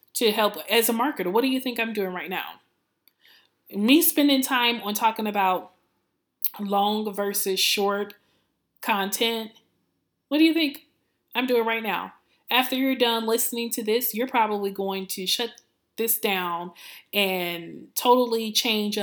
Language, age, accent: English, 20-39, American